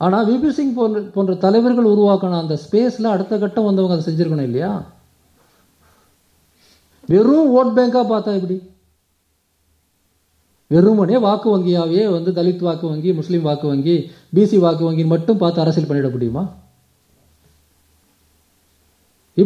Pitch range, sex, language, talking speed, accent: 135-215 Hz, male, Tamil, 110 wpm, native